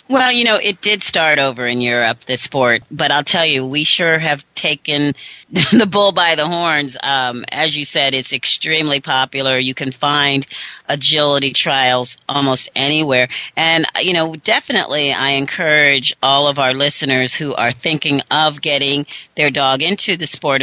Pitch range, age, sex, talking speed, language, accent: 145-190 Hz, 40-59, female, 170 wpm, English, American